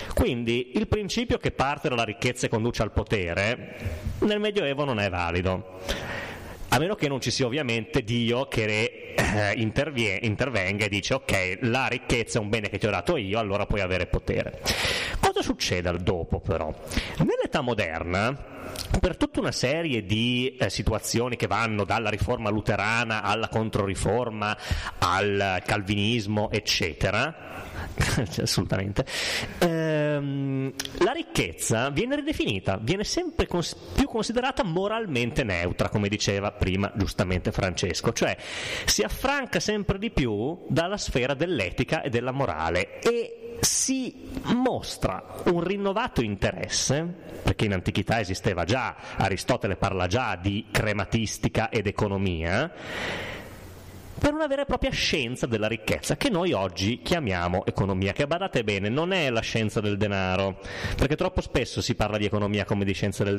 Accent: native